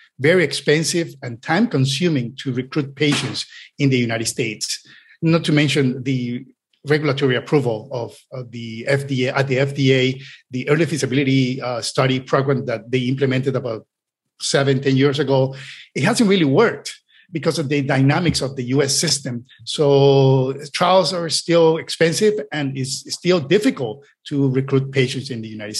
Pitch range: 130-155 Hz